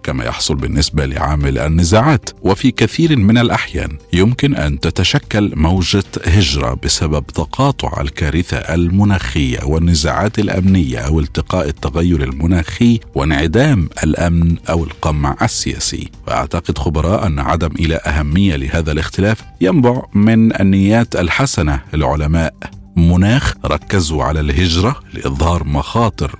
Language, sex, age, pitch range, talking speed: Arabic, male, 50-69, 80-105 Hz, 110 wpm